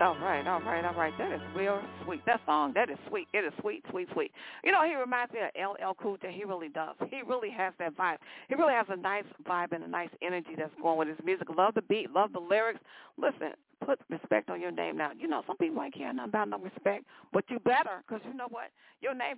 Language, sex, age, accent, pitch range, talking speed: English, female, 50-69, American, 175-245 Hz, 265 wpm